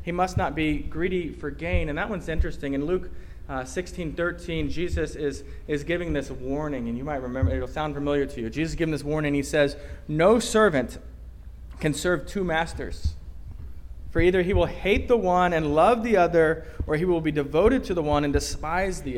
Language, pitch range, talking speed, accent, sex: English, 120-170 Hz, 210 wpm, American, male